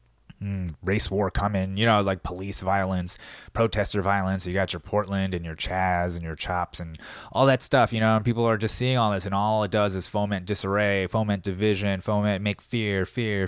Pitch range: 90-115 Hz